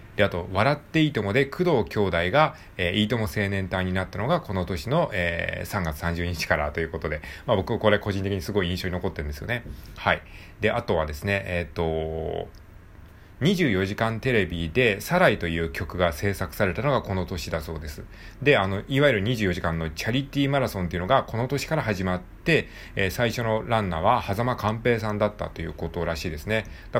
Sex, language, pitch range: male, Japanese, 85-115 Hz